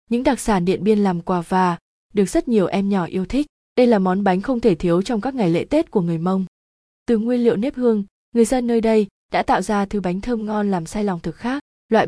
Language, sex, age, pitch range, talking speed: Vietnamese, female, 20-39, 185-230 Hz, 260 wpm